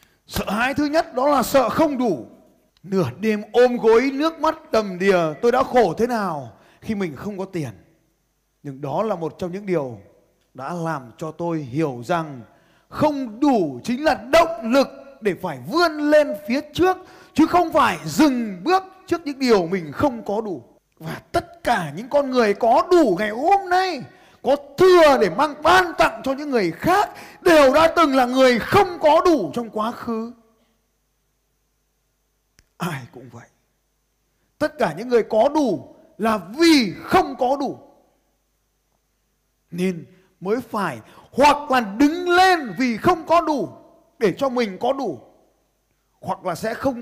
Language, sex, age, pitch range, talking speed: Vietnamese, male, 20-39, 185-300 Hz, 165 wpm